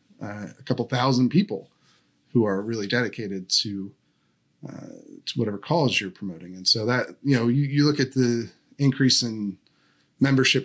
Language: English